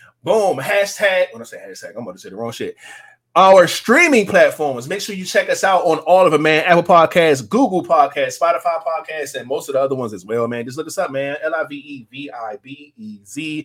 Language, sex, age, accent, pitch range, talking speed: English, male, 20-39, American, 140-190 Hz, 205 wpm